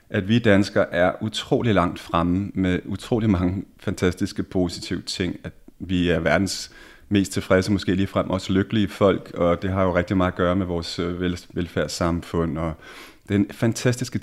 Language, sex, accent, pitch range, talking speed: Danish, male, native, 85-100 Hz, 165 wpm